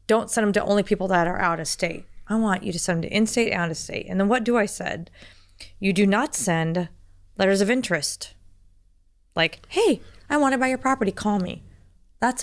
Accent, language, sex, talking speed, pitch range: American, English, female, 225 wpm, 165-215 Hz